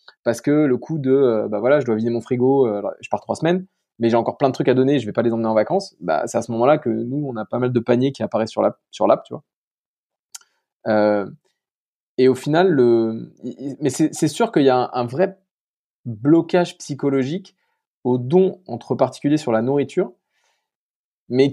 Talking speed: 215 wpm